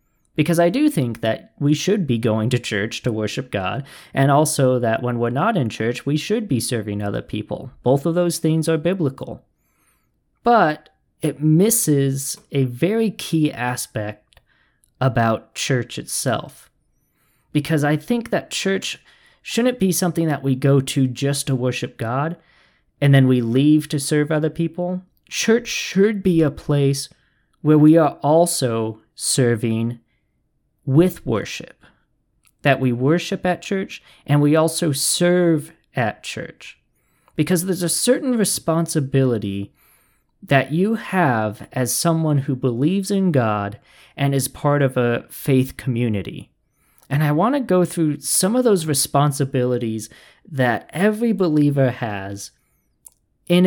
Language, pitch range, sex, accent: English, 125-170 Hz, male, American